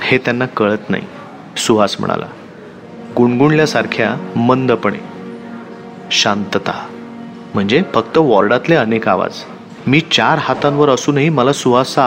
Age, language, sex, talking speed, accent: 30-49, Marathi, male, 100 wpm, native